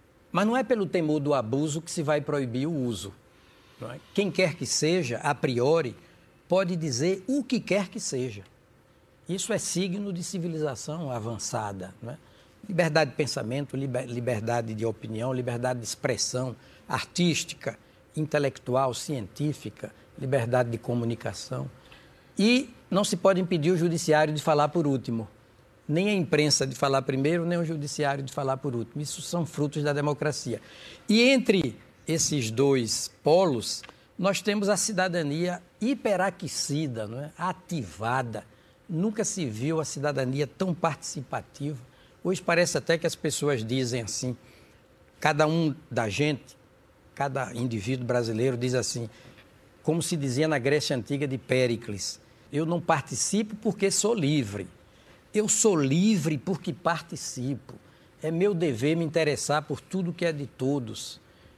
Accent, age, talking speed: Brazilian, 60-79, 145 wpm